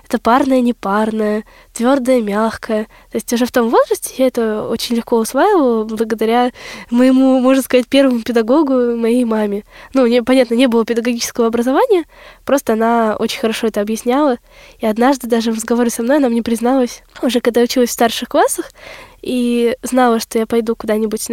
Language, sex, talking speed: Russian, female, 165 wpm